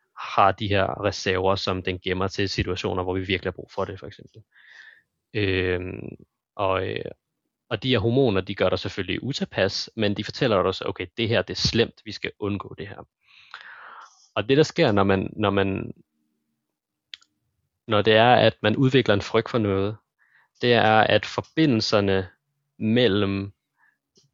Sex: male